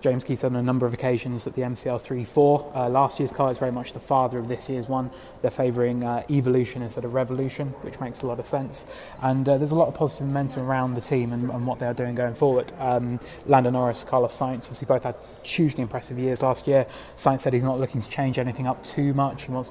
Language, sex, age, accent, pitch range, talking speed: English, male, 20-39, British, 120-135 Hz, 245 wpm